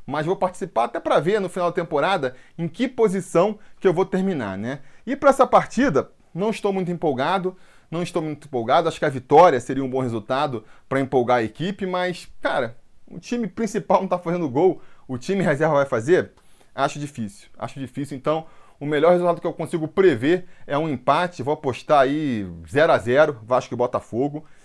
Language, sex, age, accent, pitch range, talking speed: Portuguese, male, 20-39, Brazilian, 130-180 Hz, 190 wpm